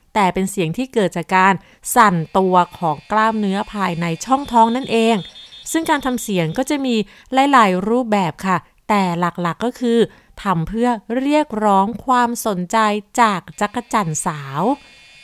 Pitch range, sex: 185-255 Hz, female